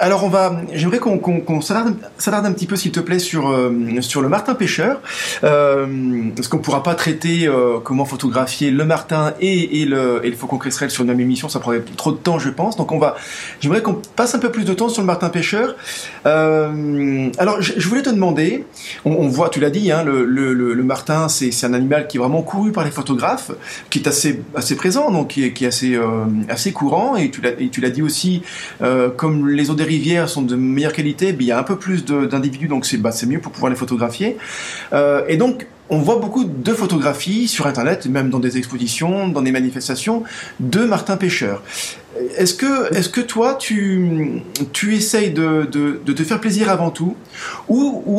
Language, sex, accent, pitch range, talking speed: French, male, French, 135-195 Hz, 225 wpm